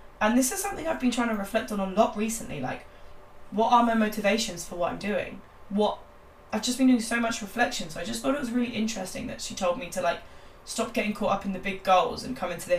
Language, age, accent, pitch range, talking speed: English, 10-29, British, 175-225 Hz, 265 wpm